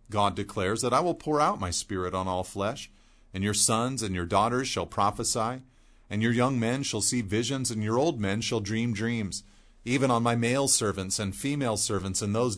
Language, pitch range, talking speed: English, 95-120 Hz, 210 wpm